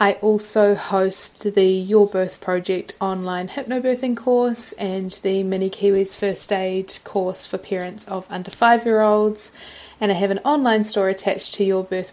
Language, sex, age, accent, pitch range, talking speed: English, female, 20-39, Australian, 185-210 Hz, 160 wpm